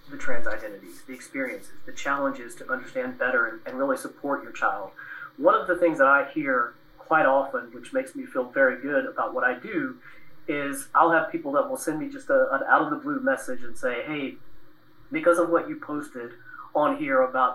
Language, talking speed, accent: English, 210 wpm, American